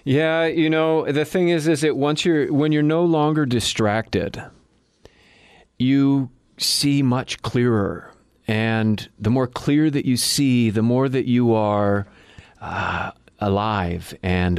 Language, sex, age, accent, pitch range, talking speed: English, male, 40-59, American, 90-110 Hz, 140 wpm